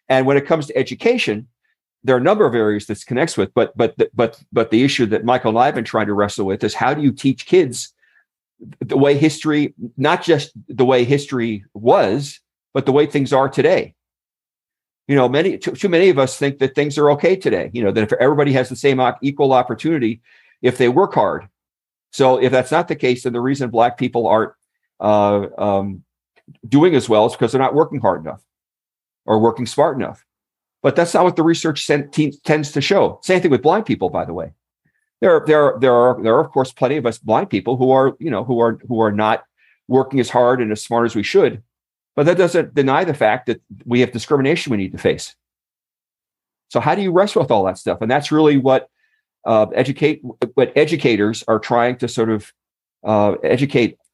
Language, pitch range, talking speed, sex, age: English, 115-145 Hz, 220 wpm, male, 50-69